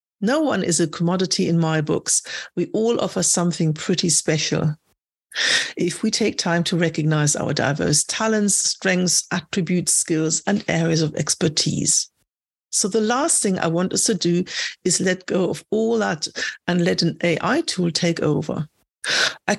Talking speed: 160 wpm